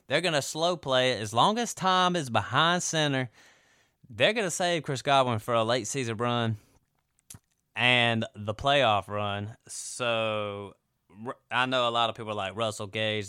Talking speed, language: 175 wpm, English